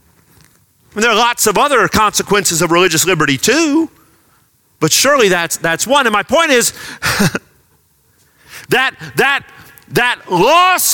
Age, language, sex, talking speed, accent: 40-59, English, male, 125 wpm, American